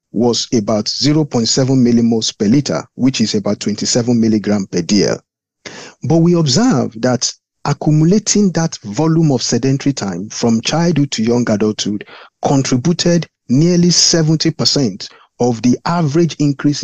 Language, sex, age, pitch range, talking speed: English, male, 50-69, 115-165 Hz, 125 wpm